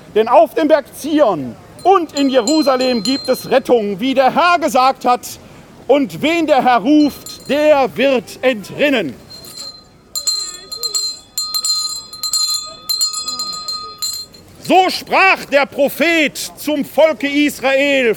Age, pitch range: 50-69, 255-310 Hz